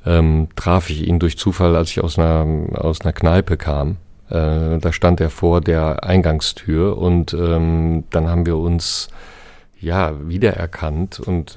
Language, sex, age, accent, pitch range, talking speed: German, male, 40-59, German, 80-95 Hz, 155 wpm